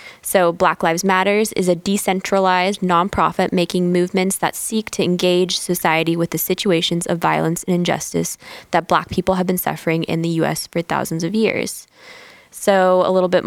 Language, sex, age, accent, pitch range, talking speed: English, female, 10-29, American, 165-190 Hz, 175 wpm